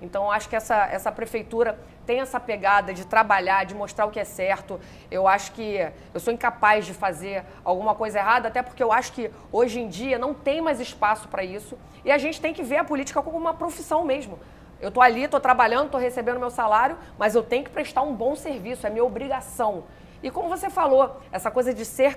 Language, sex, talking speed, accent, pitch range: Portuguese, female, 225 wpm, Brazilian, 200-255 Hz